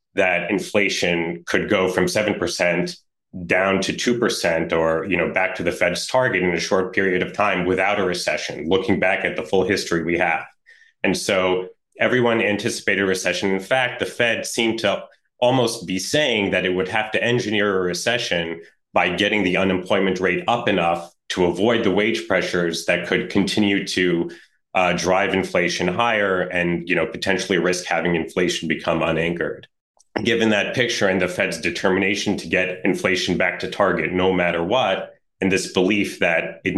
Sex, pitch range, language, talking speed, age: male, 90-100 Hz, English, 175 wpm, 30-49